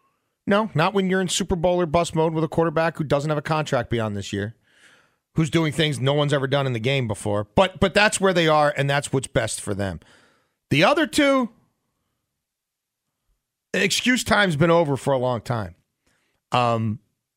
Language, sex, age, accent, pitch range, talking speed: English, male, 40-59, American, 130-165 Hz, 195 wpm